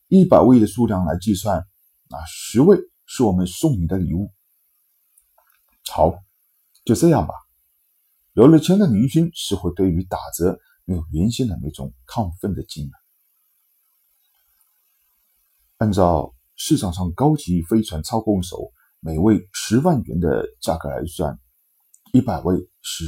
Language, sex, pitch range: Chinese, male, 80-110 Hz